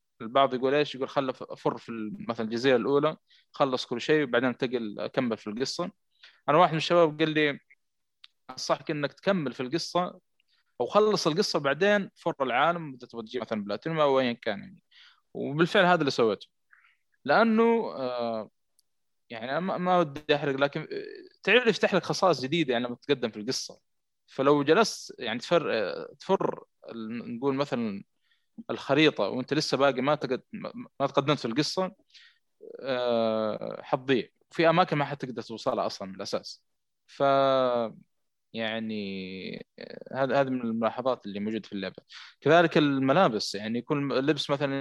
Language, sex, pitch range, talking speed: Arabic, male, 120-165 Hz, 140 wpm